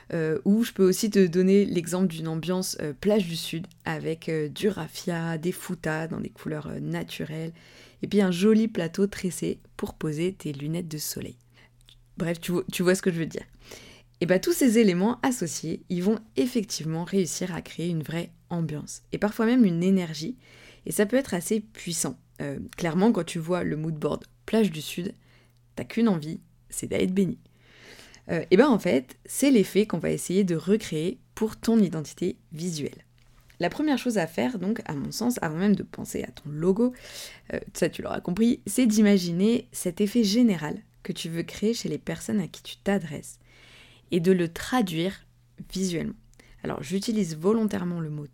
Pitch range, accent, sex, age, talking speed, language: 155-205 Hz, French, female, 20-39, 190 wpm, French